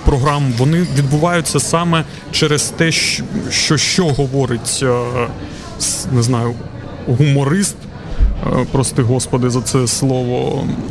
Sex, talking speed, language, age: male, 95 wpm, Ukrainian, 30-49